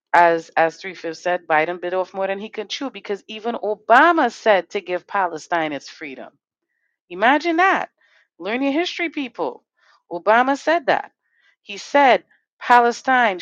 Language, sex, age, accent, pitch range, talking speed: English, female, 40-59, American, 180-250 Hz, 150 wpm